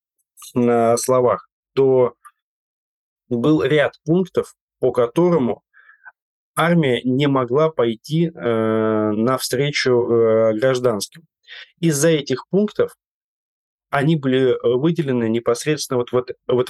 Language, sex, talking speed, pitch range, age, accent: Russian, male, 85 wpm, 115-140 Hz, 20-39, native